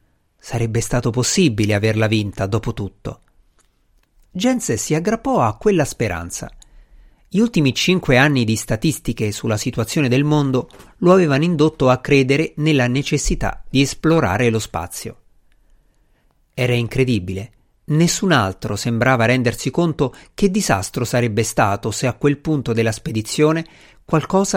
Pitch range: 115-155 Hz